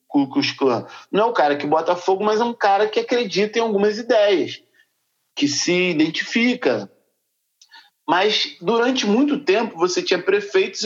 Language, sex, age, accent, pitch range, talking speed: Portuguese, male, 50-69, Brazilian, 180-290 Hz, 145 wpm